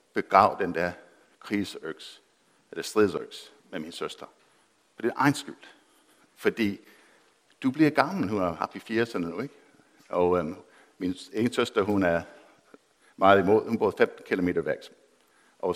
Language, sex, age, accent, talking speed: Danish, male, 60-79, native, 150 wpm